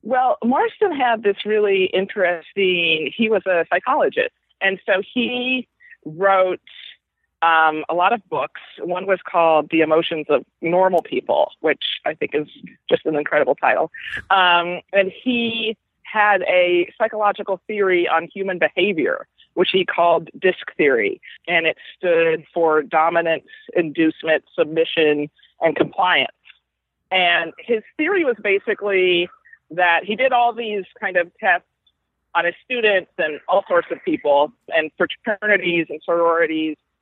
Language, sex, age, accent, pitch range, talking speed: English, female, 40-59, American, 170-220 Hz, 135 wpm